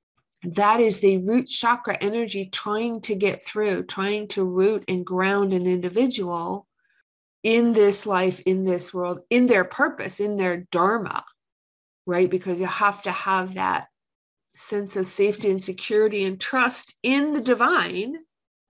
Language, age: English, 50-69